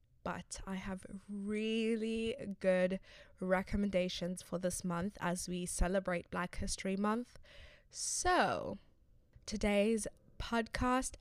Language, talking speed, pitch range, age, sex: English, 95 wpm, 175-200 Hz, 10-29, female